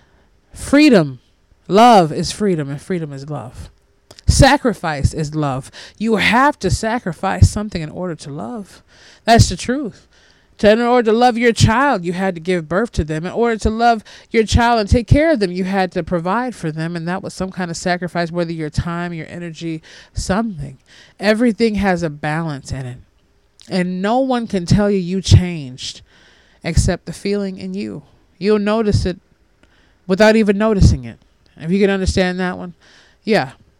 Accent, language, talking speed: American, English, 175 wpm